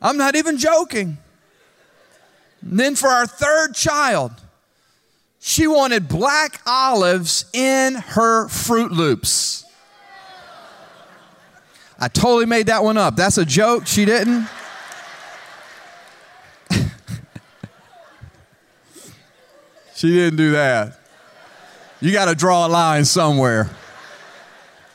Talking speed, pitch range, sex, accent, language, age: 95 wpm, 185-285 Hz, male, American, English, 40-59